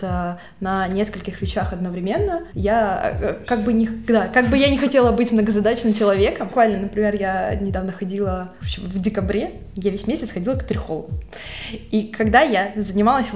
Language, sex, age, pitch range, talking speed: Russian, female, 20-39, 185-220 Hz, 160 wpm